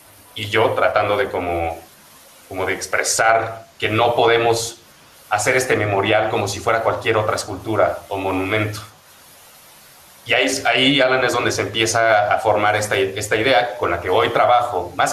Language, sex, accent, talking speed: Spanish, male, Mexican, 165 wpm